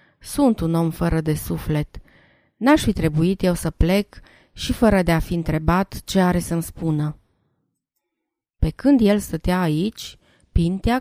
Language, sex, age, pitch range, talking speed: Romanian, female, 30-49, 170-220 Hz, 155 wpm